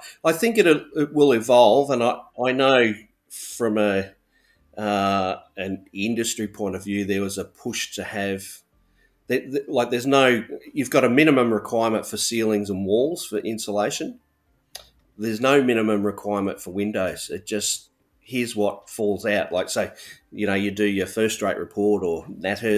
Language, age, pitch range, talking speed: English, 30-49, 95-115 Hz, 165 wpm